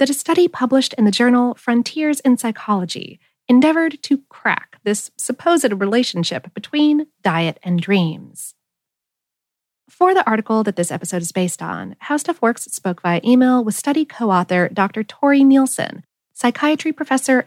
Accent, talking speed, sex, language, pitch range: American, 140 wpm, female, English, 190-280 Hz